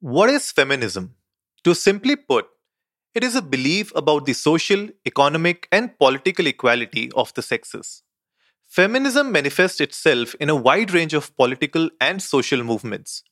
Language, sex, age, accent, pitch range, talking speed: English, male, 30-49, Indian, 140-200 Hz, 145 wpm